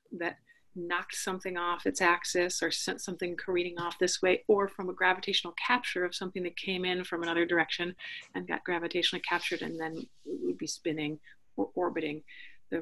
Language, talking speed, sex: English, 185 wpm, female